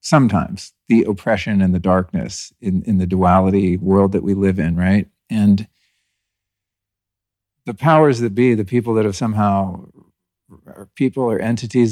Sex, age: male, 50-69